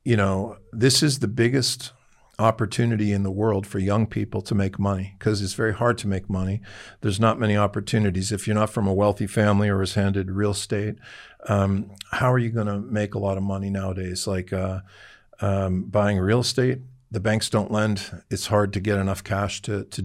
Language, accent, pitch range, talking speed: Greek, American, 100-120 Hz, 205 wpm